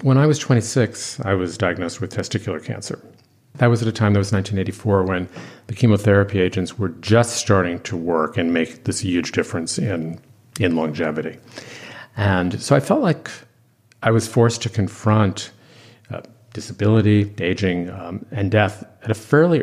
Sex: male